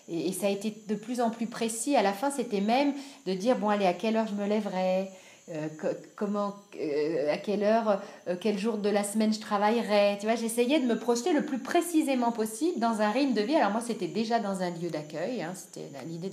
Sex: female